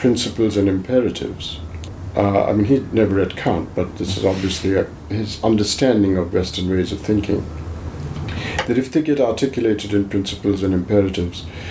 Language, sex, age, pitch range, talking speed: English, male, 50-69, 90-115 Hz, 155 wpm